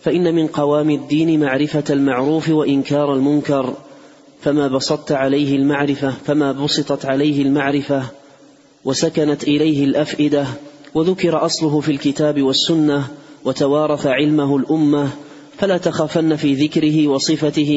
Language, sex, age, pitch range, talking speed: Arabic, male, 30-49, 145-155 Hz, 110 wpm